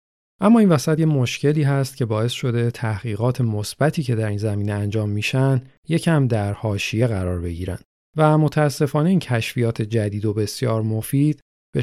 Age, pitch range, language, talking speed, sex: 40-59, 105-135 Hz, Persian, 155 wpm, male